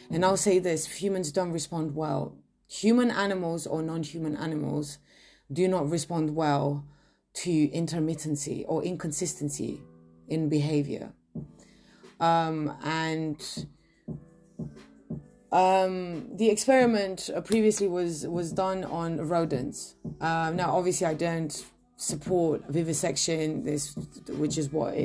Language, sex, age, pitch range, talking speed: English, female, 30-49, 150-185 Hz, 110 wpm